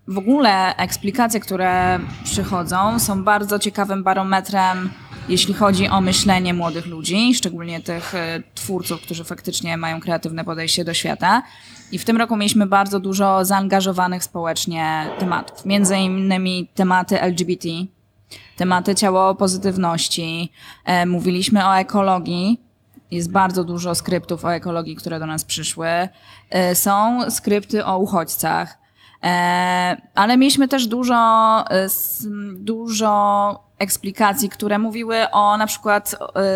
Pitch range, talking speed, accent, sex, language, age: 175-205 Hz, 115 wpm, native, female, Polish, 20-39